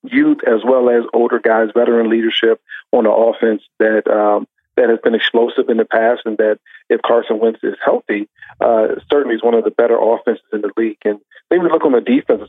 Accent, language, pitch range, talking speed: American, English, 115-130 Hz, 215 wpm